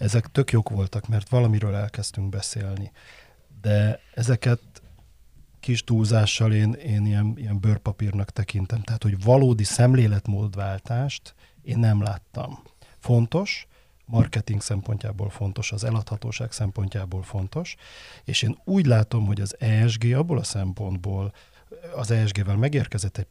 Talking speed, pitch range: 120 wpm, 100-120 Hz